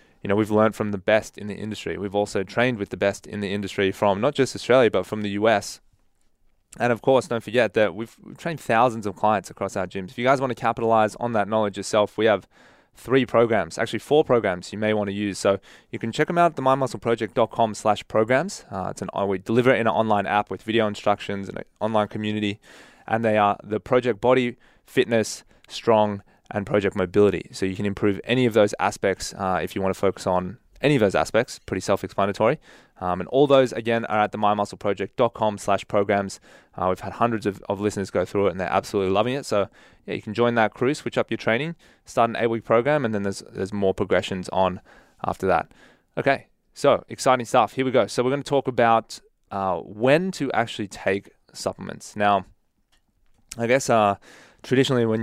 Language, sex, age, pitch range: English, male, 20-39, 100-120 Hz